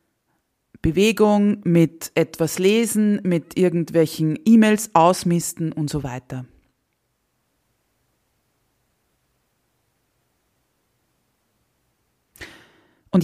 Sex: female